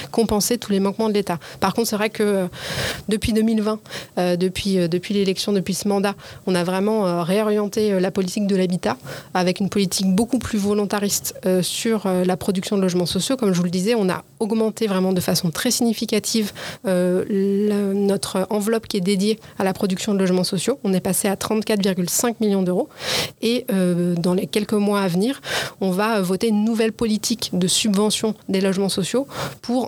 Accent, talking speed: French, 180 wpm